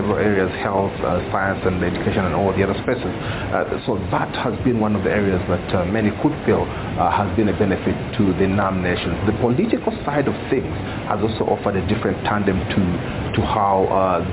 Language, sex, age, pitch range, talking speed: English, male, 40-59, 100-115 Hz, 205 wpm